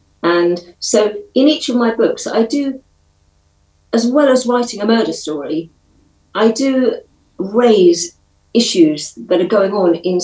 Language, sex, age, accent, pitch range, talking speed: English, female, 50-69, British, 165-230 Hz, 145 wpm